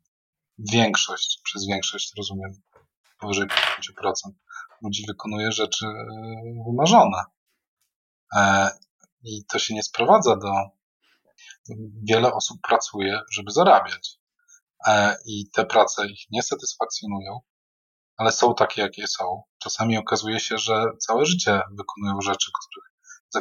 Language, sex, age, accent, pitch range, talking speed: Polish, male, 20-39, native, 105-150 Hz, 105 wpm